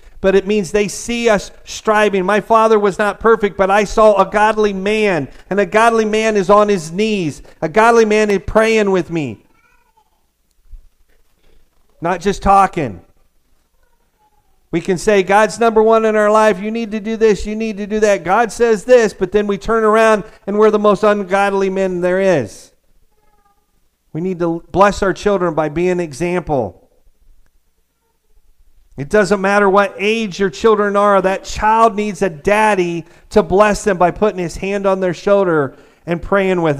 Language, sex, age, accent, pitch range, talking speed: English, male, 50-69, American, 155-210 Hz, 175 wpm